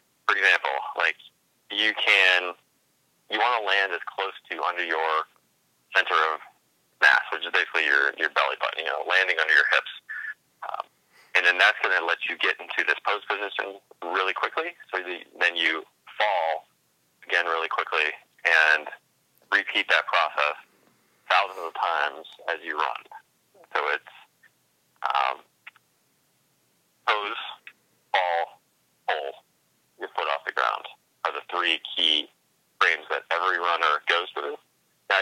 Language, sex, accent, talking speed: English, male, American, 145 wpm